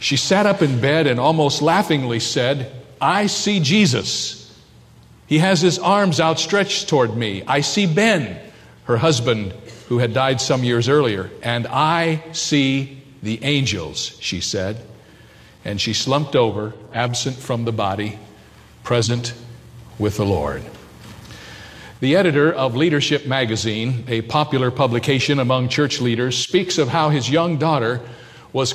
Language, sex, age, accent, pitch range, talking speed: English, male, 50-69, American, 120-150 Hz, 140 wpm